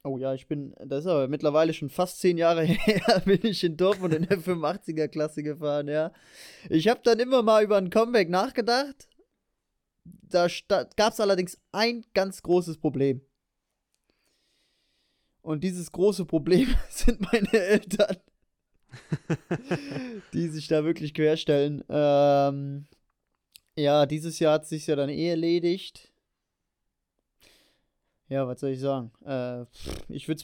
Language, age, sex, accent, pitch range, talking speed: German, 20-39, male, German, 145-180 Hz, 140 wpm